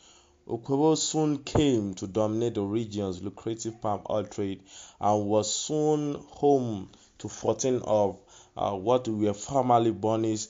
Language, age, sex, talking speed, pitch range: English, 20-39, male, 130 wpm, 100-120 Hz